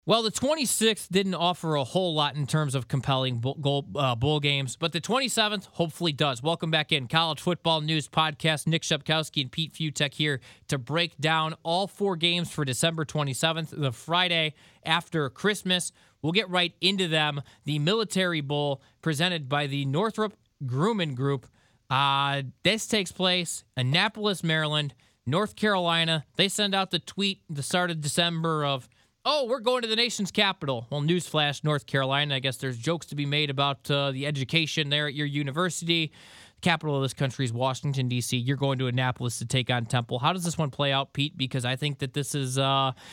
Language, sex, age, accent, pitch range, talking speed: English, male, 20-39, American, 140-180 Hz, 190 wpm